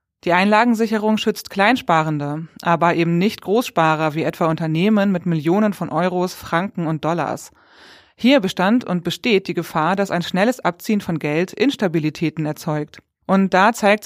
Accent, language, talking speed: German, German, 150 wpm